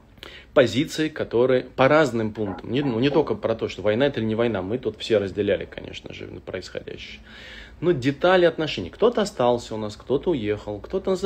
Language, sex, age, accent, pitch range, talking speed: Russian, male, 20-39, native, 100-130 Hz, 185 wpm